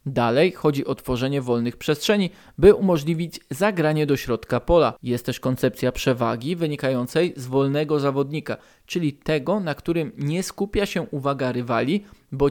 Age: 20-39